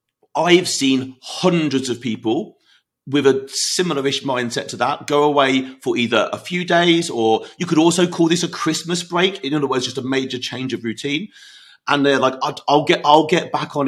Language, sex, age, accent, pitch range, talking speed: English, male, 40-59, British, 125-155 Hz, 200 wpm